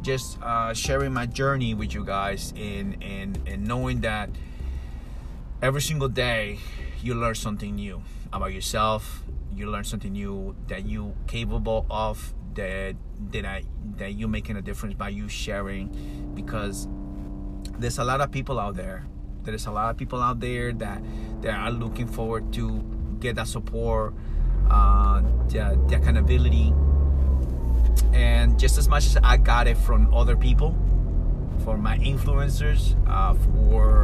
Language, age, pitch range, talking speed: English, 30-49, 80-115 Hz, 150 wpm